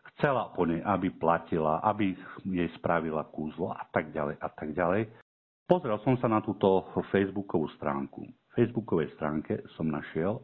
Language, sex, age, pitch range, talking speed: Slovak, male, 50-69, 80-110 Hz, 155 wpm